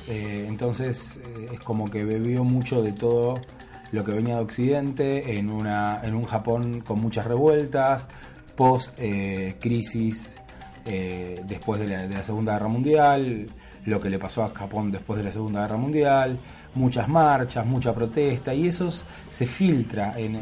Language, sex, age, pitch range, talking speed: Spanish, male, 20-39, 110-140 Hz, 160 wpm